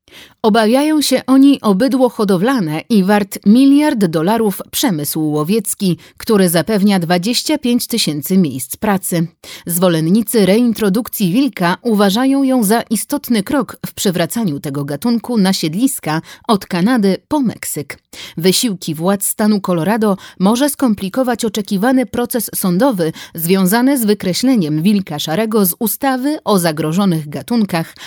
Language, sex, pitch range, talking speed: Polish, female, 175-240 Hz, 115 wpm